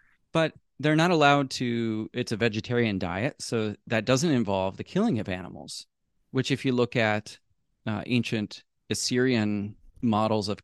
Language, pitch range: English, 105-130 Hz